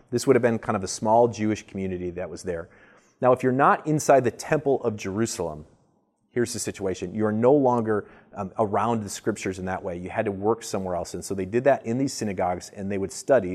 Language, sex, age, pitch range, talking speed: English, male, 30-49, 95-120 Hz, 235 wpm